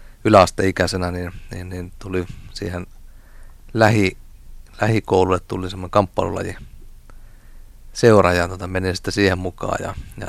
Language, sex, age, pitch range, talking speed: Finnish, male, 30-49, 95-105 Hz, 115 wpm